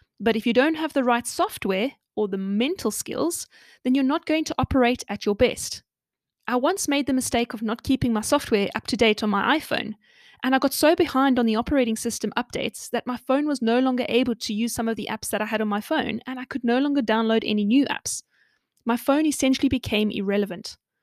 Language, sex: English, female